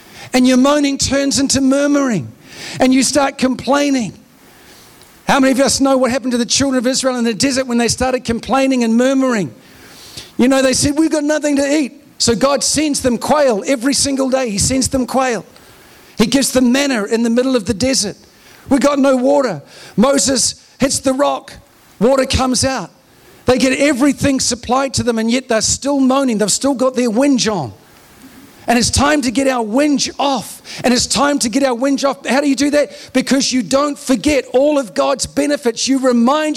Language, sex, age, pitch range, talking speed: English, male, 50-69, 210-275 Hz, 200 wpm